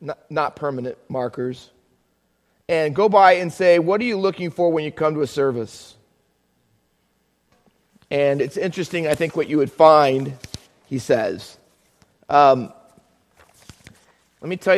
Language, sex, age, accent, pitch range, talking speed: English, male, 30-49, American, 135-175 Hz, 140 wpm